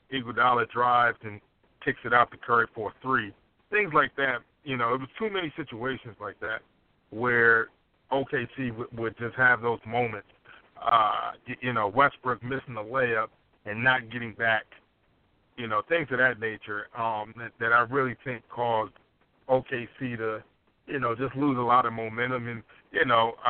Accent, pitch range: American, 115-135 Hz